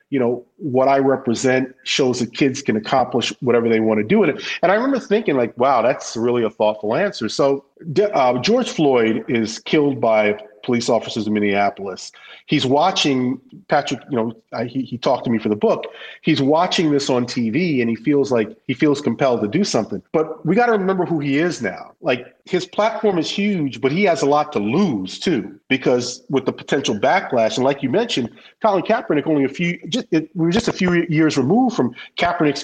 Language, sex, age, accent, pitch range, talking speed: English, male, 40-59, American, 115-160 Hz, 210 wpm